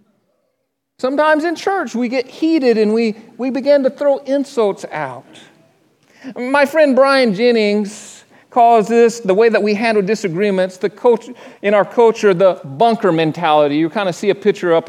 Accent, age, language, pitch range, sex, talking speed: American, 40-59, English, 185-260 Hz, male, 165 wpm